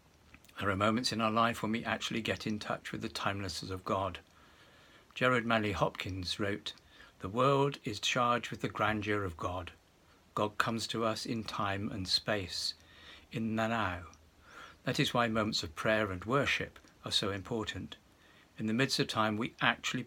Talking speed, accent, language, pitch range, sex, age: 175 wpm, British, English, 95-115 Hz, male, 60-79